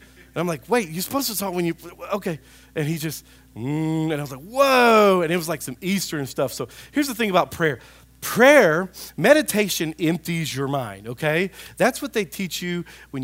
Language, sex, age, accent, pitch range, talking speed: English, male, 40-59, American, 150-205 Hz, 205 wpm